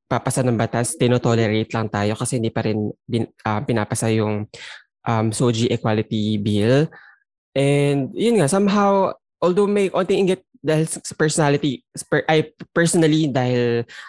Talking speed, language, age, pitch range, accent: 135 wpm, Filipino, 20-39, 110-140 Hz, native